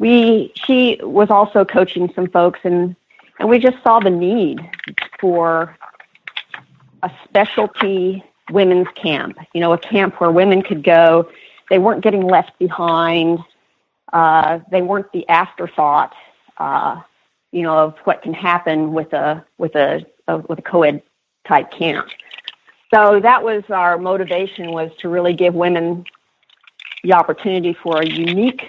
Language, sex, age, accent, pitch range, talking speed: English, female, 50-69, American, 170-200 Hz, 140 wpm